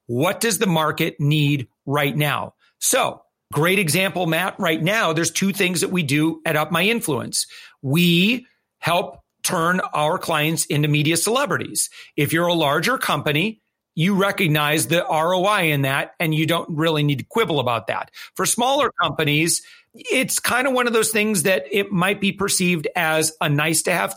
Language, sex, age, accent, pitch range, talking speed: English, male, 40-59, American, 150-185 Hz, 170 wpm